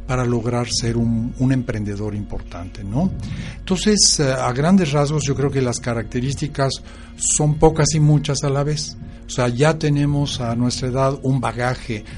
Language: Spanish